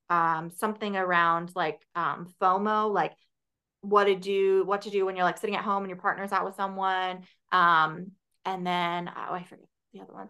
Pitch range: 175-210 Hz